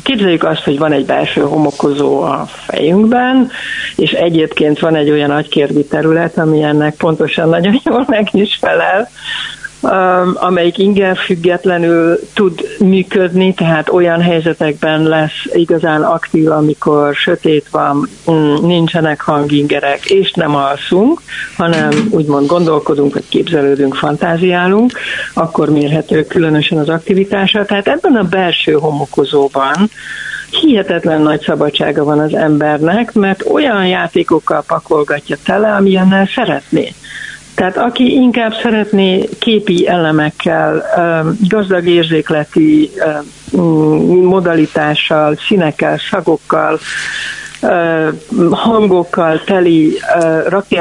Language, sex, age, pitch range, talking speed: Hungarian, female, 60-79, 155-195 Hz, 100 wpm